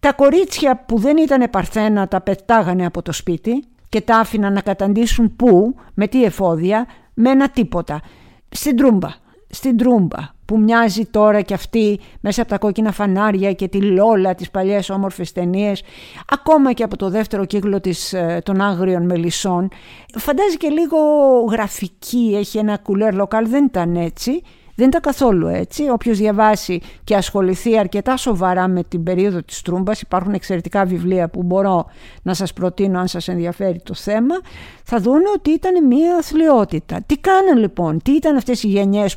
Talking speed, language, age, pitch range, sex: 160 wpm, Greek, 50-69, 185-245 Hz, female